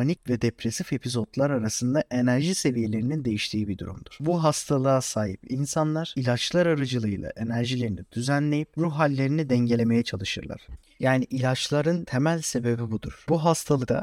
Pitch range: 115-155 Hz